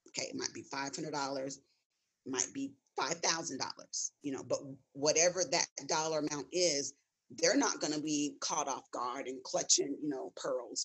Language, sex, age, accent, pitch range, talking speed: English, female, 40-59, American, 145-175 Hz, 160 wpm